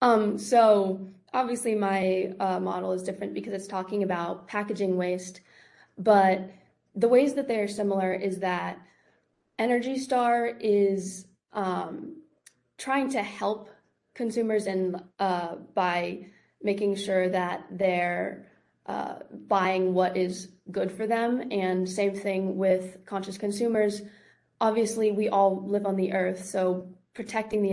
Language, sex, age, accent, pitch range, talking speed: English, female, 20-39, American, 185-205 Hz, 130 wpm